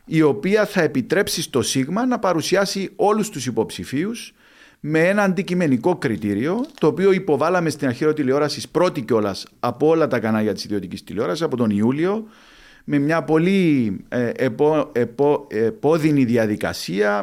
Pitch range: 120-180 Hz